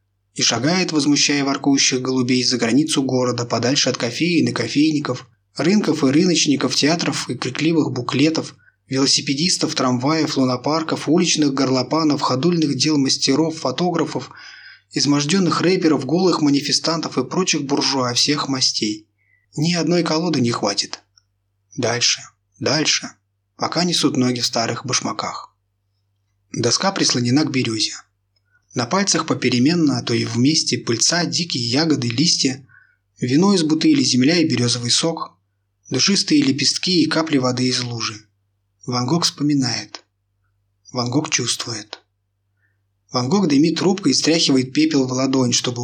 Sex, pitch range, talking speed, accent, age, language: male, 110-150 Hz, 125 wpm, native, 20-39, Russian